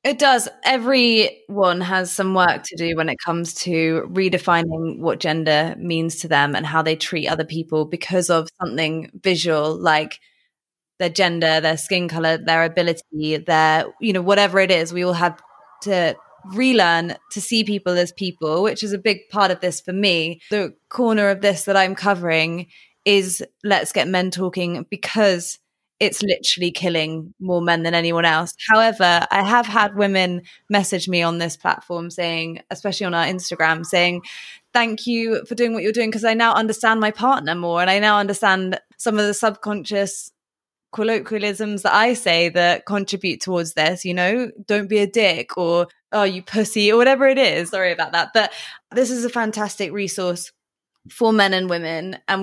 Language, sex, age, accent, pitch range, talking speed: English, female, 20-39, British, 170-210 Hz, 180 wpm